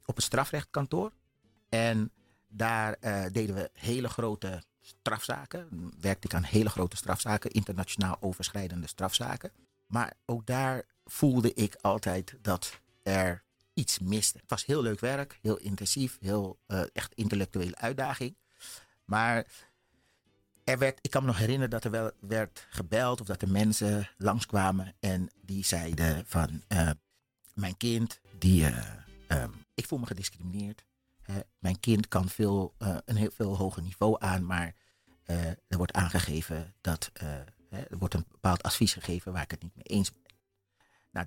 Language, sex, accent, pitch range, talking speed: Dutch, male, Dutch, 95-110 Hz, 155 wpm